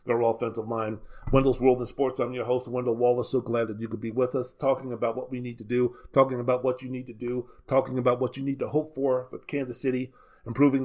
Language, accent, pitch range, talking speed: English, American, 125-150 Hz, 255 wpm